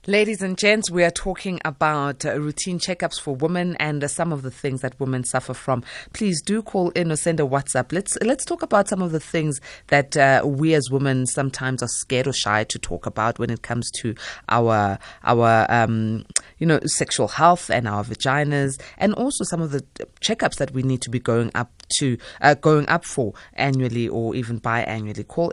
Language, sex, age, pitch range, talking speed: English, female, 20-39, 120-165 Hz, 205 wpm